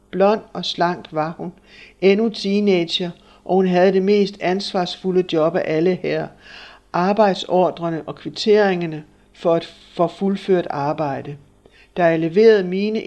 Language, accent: Danish, native